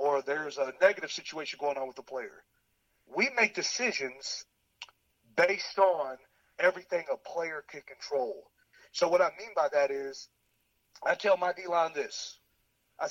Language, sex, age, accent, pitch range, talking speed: English, male, 40-59, American, 135-190 Hz, 155 wpm